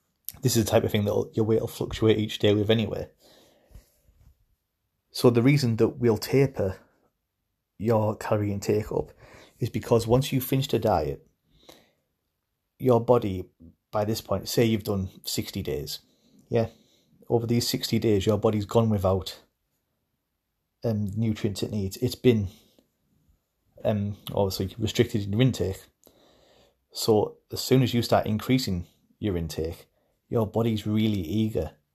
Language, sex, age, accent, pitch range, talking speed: English, male, 30-49, British, 100-115 Hz, 145 wpm